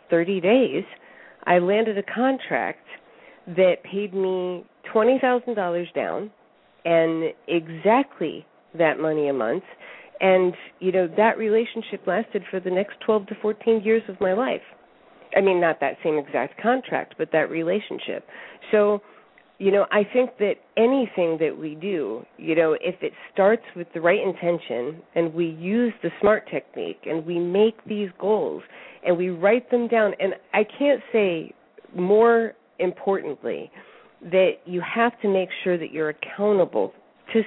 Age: 40-59